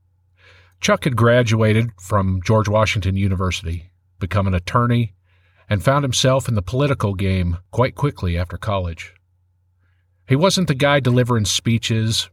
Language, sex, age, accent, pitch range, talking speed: English, male, 50-69, American, 90-125 Hz, 130 wpm